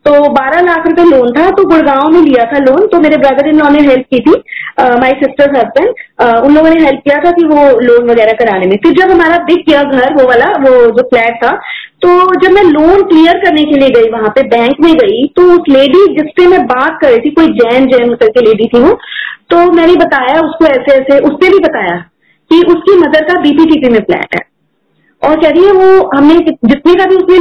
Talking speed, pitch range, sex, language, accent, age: 225 wpm, 260-340 Hz, female, Hindi, native, 30-49